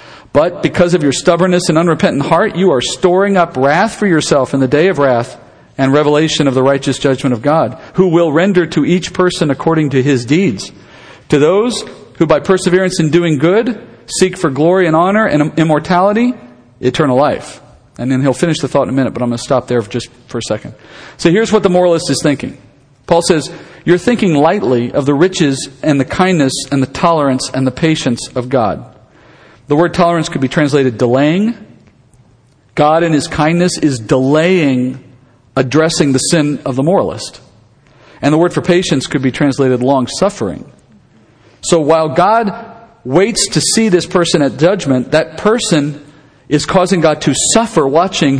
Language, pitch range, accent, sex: English, 135-175 Hz, American, male